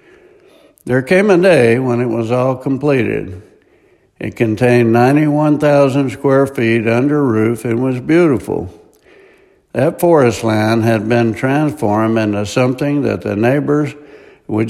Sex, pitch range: male, 115-145 Hz